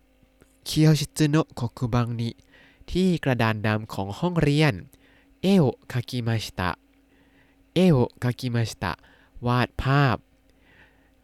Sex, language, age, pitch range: male, Thai, 20-39, 110-145 Hz